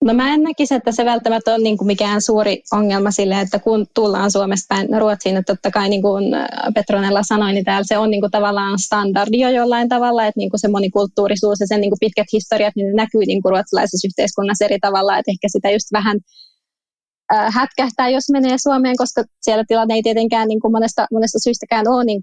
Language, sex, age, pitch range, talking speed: Finnish, female, 20-39, 200-220 Hz, 195 wpm